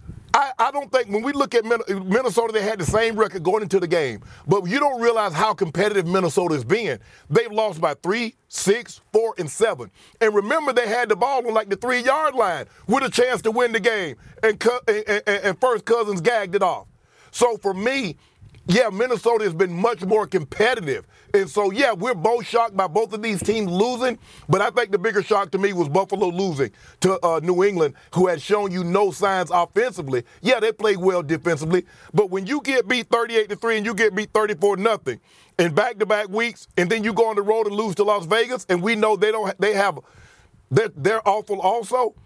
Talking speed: 205 wpm